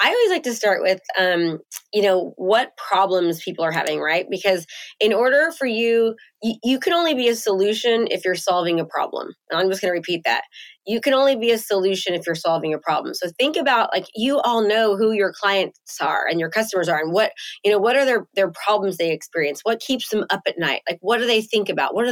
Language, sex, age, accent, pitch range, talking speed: English, female, 20-39, American, 180-225 Hz, 245 wpm